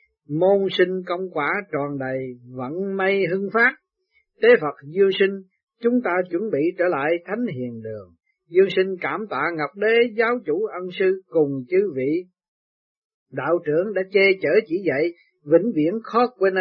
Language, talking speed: Vietnamese, 170 wpm